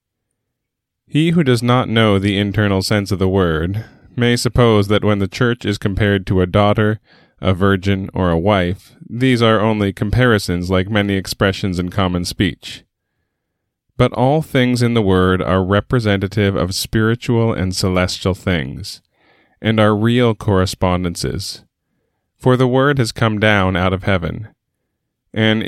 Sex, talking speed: male, 150 wpm